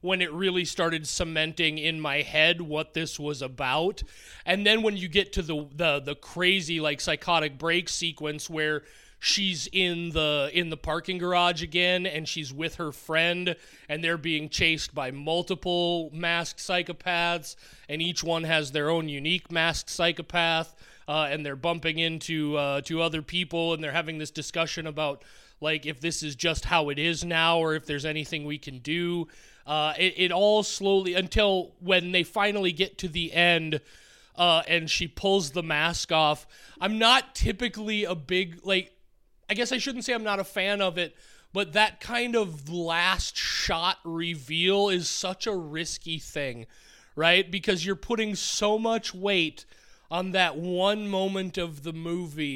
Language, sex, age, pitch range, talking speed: English, male, 30-49, 155-185 Hz, 170 wpm